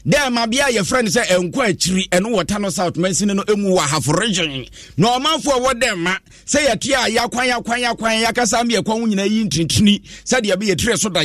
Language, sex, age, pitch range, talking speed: English, male, 50-69, 175-230 Hz, 235 wpm